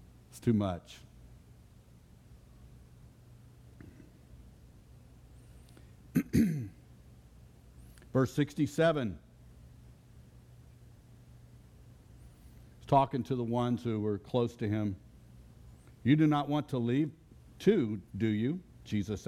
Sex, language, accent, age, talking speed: male, English, American, 60-79, 80 wpm